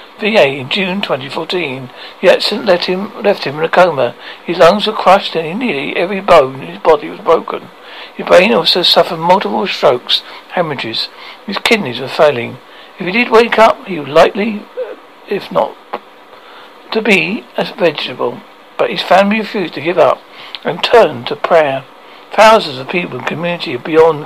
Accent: British